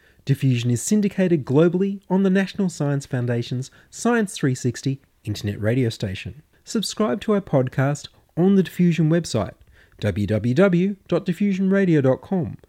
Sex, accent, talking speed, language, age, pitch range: male, Australian, 110 wpm, English, 30-49, 120-185 Hz